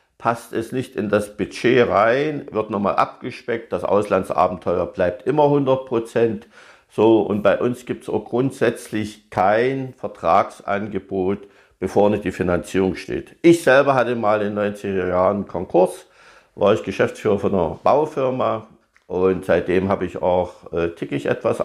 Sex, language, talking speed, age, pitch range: male, German, 145 wpm, 50-69, 100-135 Hz